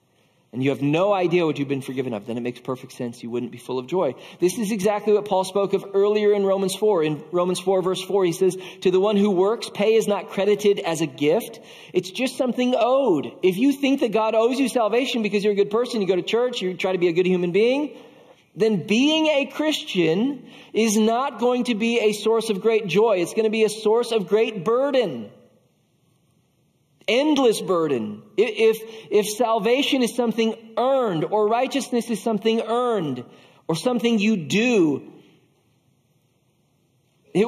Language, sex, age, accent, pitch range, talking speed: English, male, 40-59, American, 150-225 Hz, 195 wpm